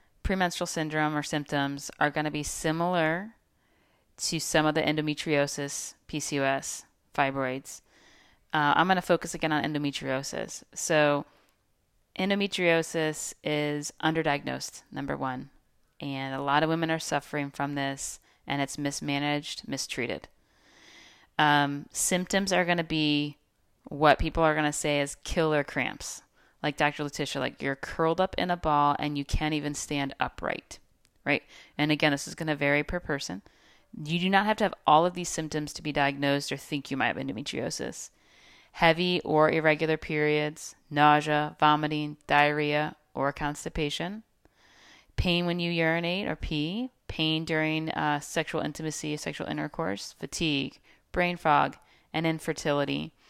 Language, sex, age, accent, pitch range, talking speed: English, female, 30-49, American, 145-160 Hz, 145 wpm